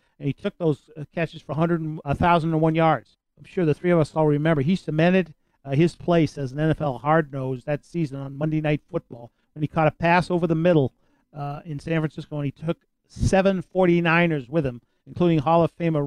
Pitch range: 145-170 Hz